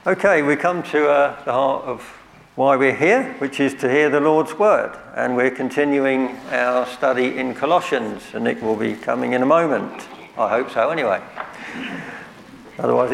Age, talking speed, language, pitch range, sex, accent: 60-79, 175 wpm, English, 125-145 Hz, male, British